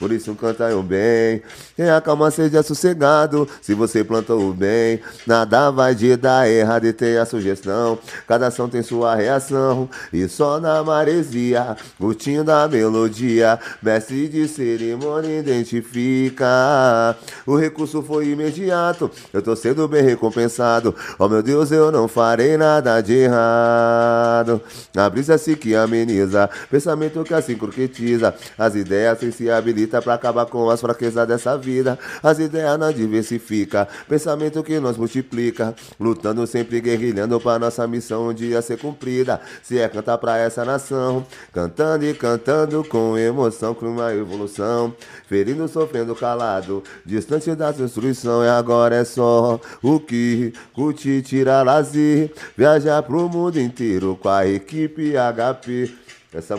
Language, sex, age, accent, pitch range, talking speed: Portuguese, male, 30-49, Brazilian, 115-145 Hz, 145 wpm